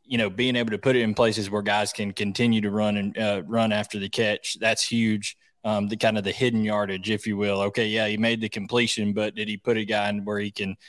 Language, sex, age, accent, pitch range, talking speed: English, male, 20-39, American, 105-125 Hz, 265 wpm